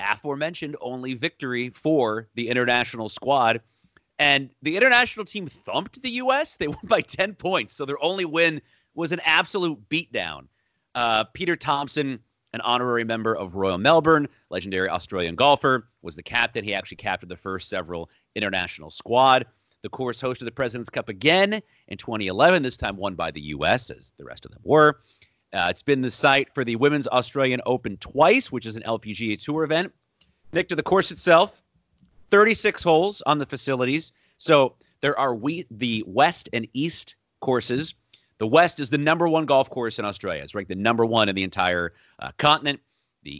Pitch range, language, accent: 110-155 Hz, English, American